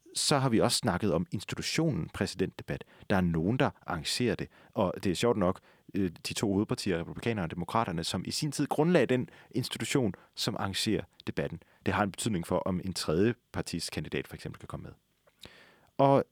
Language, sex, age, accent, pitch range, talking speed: Danish, male, 30-49, native, 90-115 Hz, 185 wpm